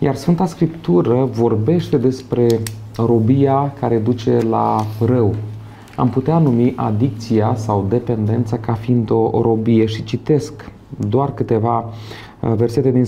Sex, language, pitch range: male, Romanian, 115-150 Hz